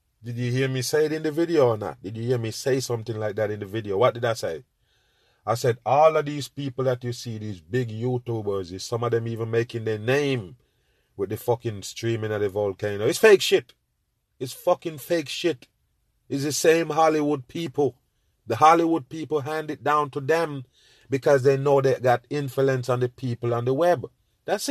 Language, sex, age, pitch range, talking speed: English, male, 30-49, 125-170 Hz, 205 wpm